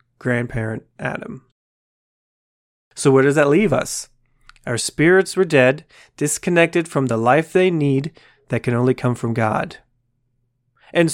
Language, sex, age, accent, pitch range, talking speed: English, male, 30-49, American, 125-150 Hz, 135 wpm